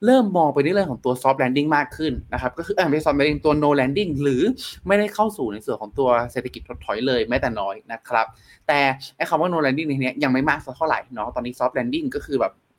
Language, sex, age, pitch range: Thai, male, 20-39, 120-155 Hz